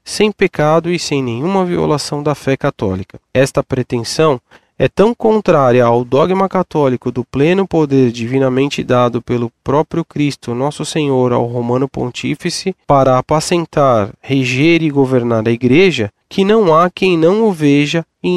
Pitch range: 125-175 Hz